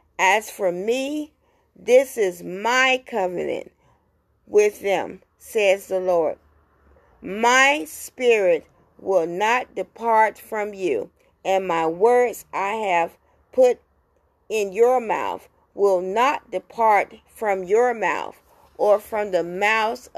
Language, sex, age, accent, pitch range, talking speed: English, female, 50-69, American, 180-250 Hz, 115 wpm